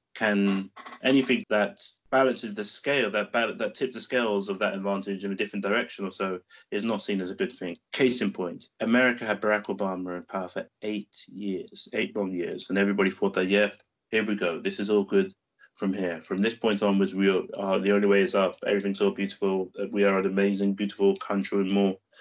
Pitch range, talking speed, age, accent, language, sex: 100-120 Hz, 210 wpm, 20-39, British, English, male